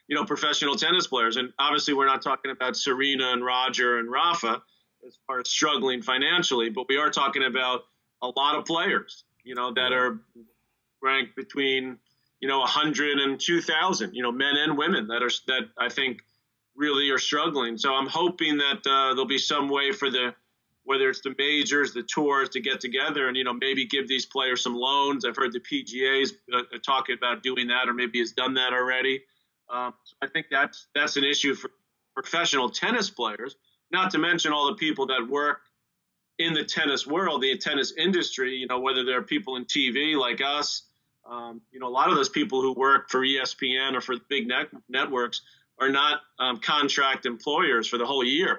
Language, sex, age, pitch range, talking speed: English, male, 30-49, 125-145 Hz, 200 wpm